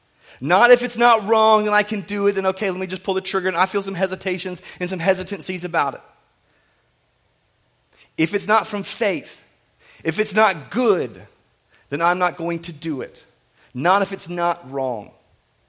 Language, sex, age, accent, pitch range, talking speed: English, male, 30-49, American, 130-190 Hz, 185 wpm